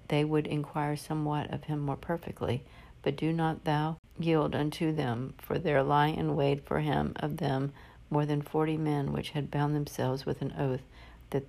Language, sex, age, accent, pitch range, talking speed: English, female, 60-79, American, 135-150 Hz, 190 wpm